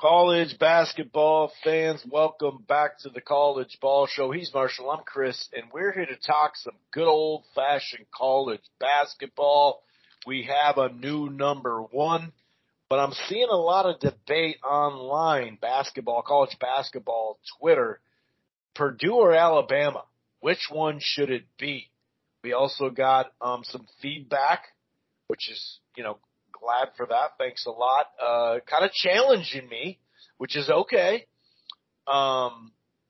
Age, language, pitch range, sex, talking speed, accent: 40-59, English, 135-170 Hz, male, 135 wpm, American